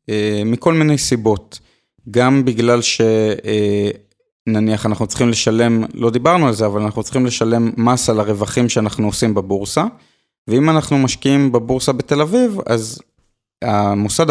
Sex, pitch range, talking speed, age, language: male, 110-140 Hz, 130 wpm, 30-49, Hebrew